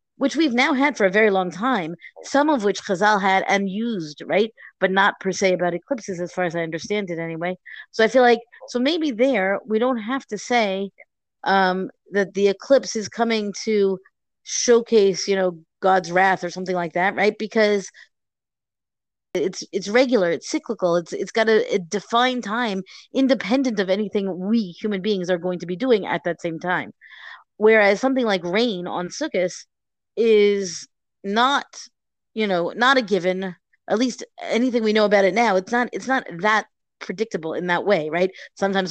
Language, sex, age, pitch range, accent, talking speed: English, female, 30-49, 185-230 Hz, American, 185 wpm